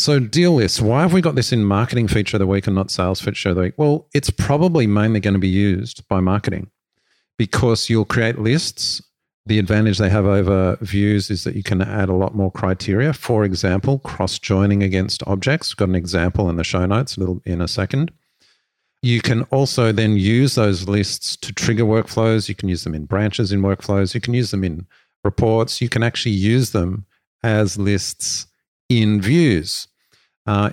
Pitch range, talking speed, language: 100-120 Hz, 200 wpm, English